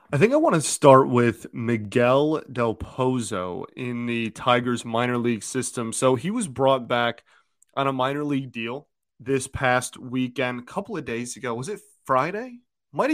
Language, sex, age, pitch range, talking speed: English, male, 20-39, 115-135 Hz, 175 wpm